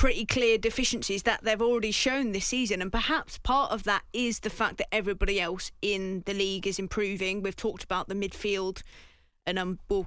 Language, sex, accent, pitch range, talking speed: English, female, British, 195-235 Hz, 195 wpm